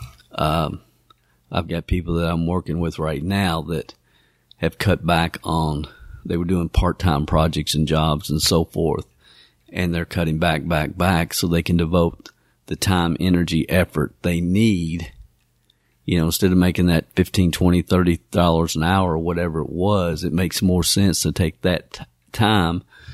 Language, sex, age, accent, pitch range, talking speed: English, male, 50-69, American, 80-90 Hz, 175 wpm